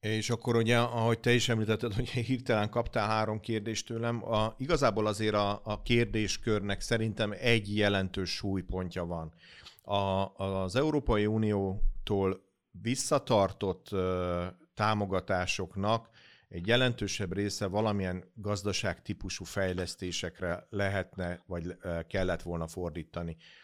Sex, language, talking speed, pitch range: male, Hungarian, 105 wpm, 95-110 Hz